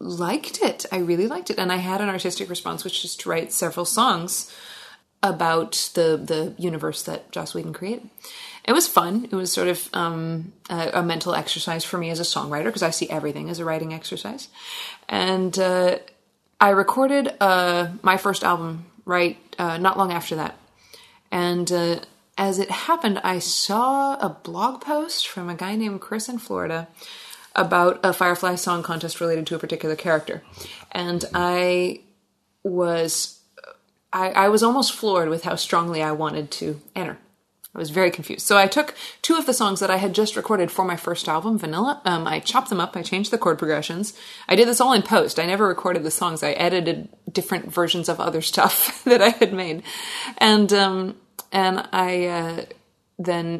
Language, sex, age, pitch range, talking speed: English, female, 20-39, 165-200 Hz, 185 wpm